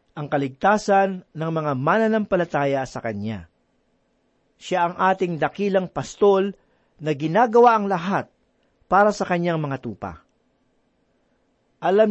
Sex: male